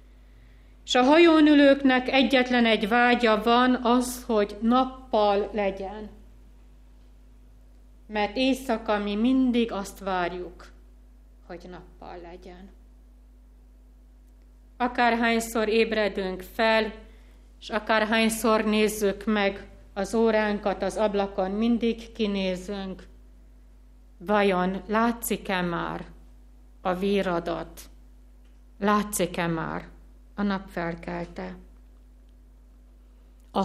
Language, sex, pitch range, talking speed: Hungarian, female, 170-230 Hz, 80 wpm